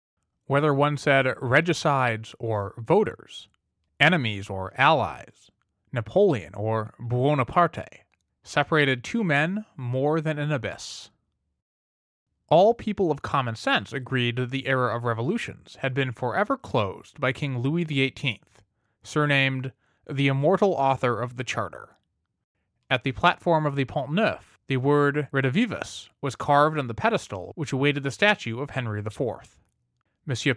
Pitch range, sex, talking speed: 115-150 Hz, male, 135 wpm